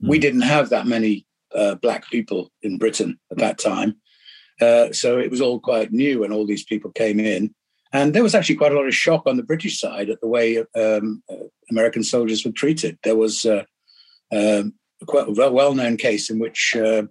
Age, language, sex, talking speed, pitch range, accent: 50-69, English, male, 200 wpm, 110-145 Hz, British